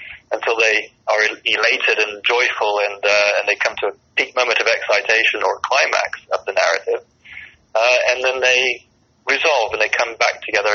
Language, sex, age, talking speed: English, male, 20-39, 180 wpm